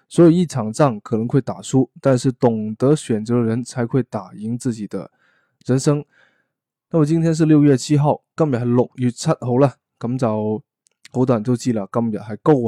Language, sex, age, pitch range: Chinese, male, 20-39, 115-140 Hz